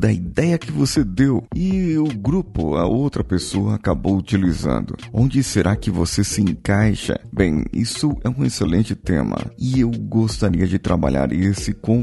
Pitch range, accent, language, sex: 100-135 Hz, Brazilian, Portuguese, male